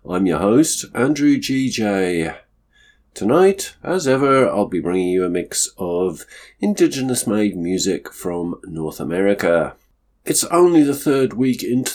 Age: 50-69